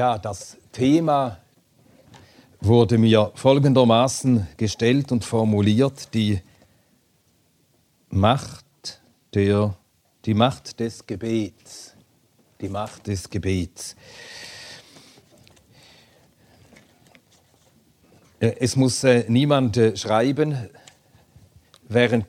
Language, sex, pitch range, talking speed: German, male, 100-120 Hz, 75 wpm